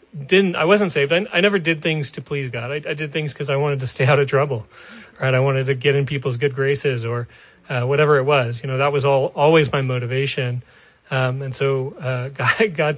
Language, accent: English, American